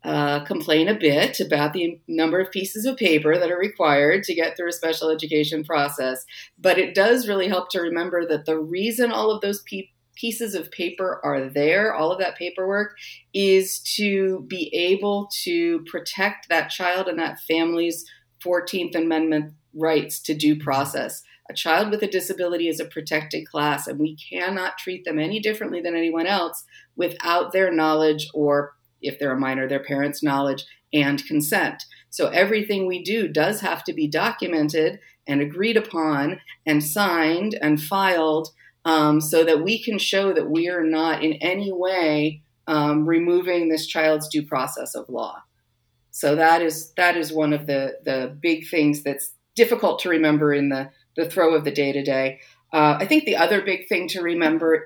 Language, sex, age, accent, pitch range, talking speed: English, female, 40-59, American, 150-185 Hz, 175 wpm